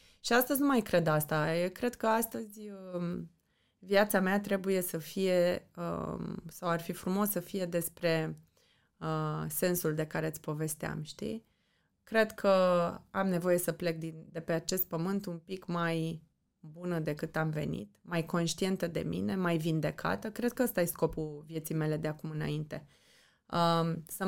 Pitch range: 165-200 Hz